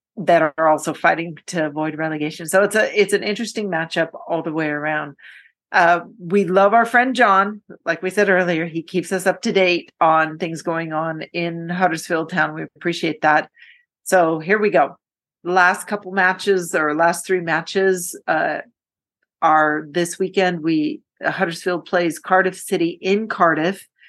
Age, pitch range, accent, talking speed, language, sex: 40-59, 155-185 Hz, American, 165 wpm, English, female